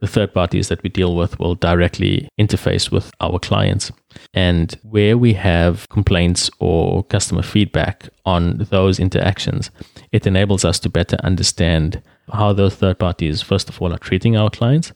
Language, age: English, 20-39